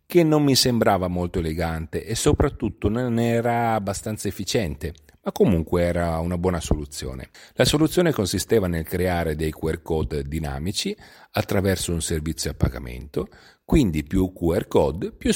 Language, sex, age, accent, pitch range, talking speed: Italian, male, 40-59, native, 85-115 Hz, 145 wpm